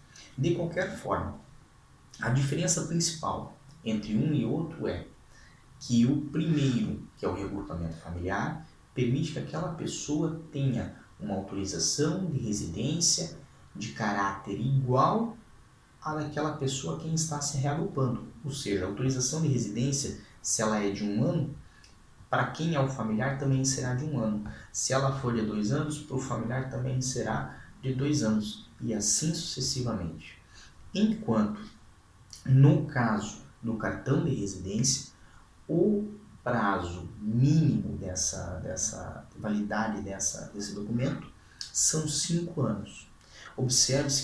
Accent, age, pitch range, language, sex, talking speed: Brazilian, 20-39, 105-140 Hz, Portuguese, male, 130 wpm